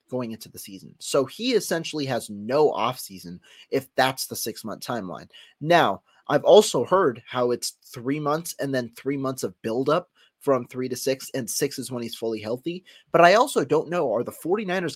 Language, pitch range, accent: English, 110-140 Hz, American